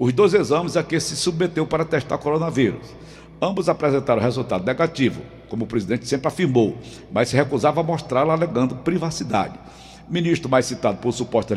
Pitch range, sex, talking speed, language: 130-170 Hz, male, 170 wpm, Portuguese